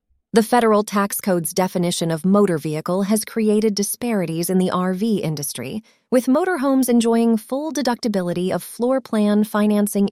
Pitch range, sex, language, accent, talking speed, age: 175-230 Hz, female, English, American, 140 wpm, 30-49